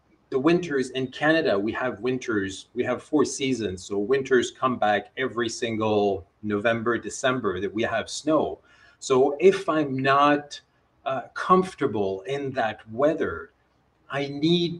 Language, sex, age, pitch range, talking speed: English, male, 40-59, 110-155 Hz, 140 wpm